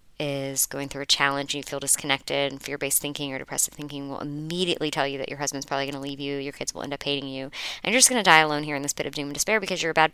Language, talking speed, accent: English, 315 wpm, American